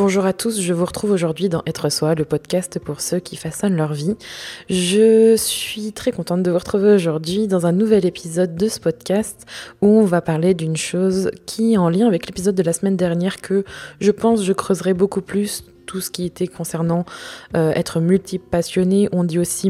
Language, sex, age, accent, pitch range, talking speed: French, female, 20-39, French, 165-200 Hz, 205 wpm